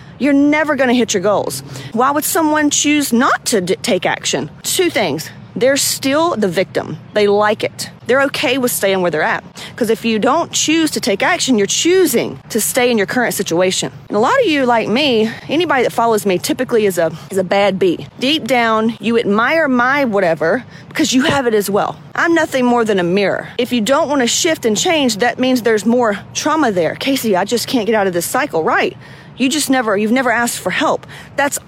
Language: English